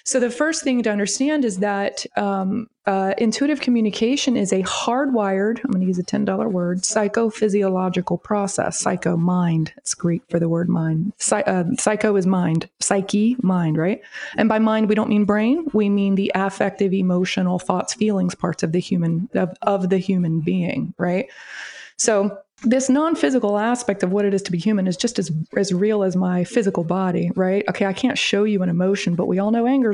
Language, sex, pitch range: English, female, 185-215 Hz